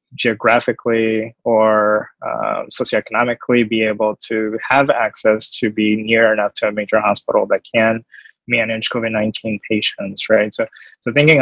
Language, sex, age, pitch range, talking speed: English, male, 20-39, 110-120 Hz, 135 wpm